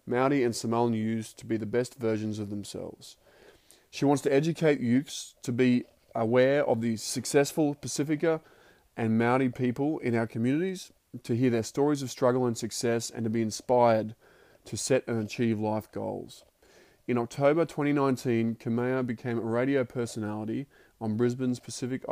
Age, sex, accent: 20-39, male, Australian